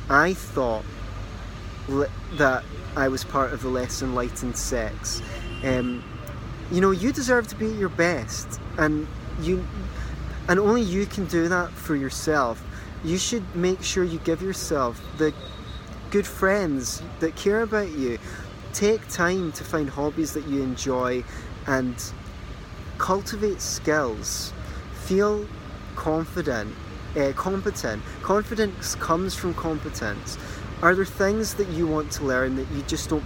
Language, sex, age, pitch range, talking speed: English, male, 20-39, 115-175 Hz, 135 wpm